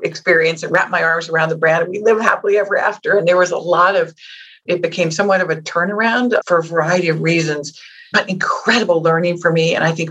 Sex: female